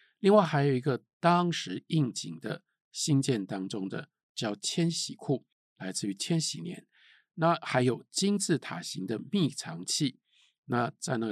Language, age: Chinese, 50-69